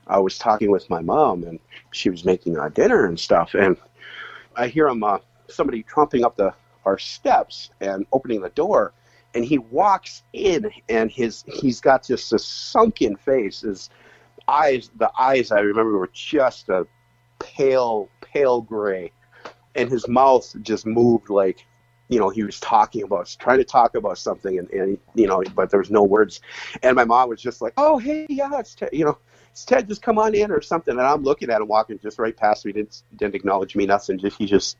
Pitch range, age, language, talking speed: 105-135 Hz, 50-69, English, 200 wpm